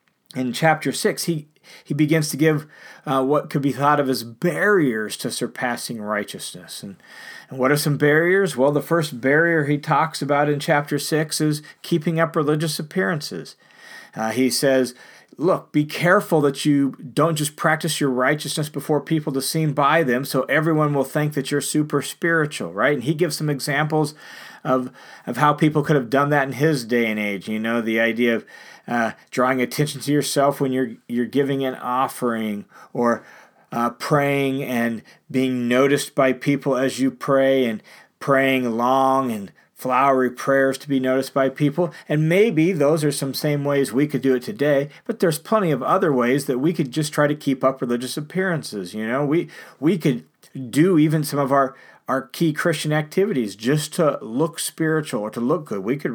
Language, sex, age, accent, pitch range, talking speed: English, male, 40-59, American, 130-155 Hz, 190 wpm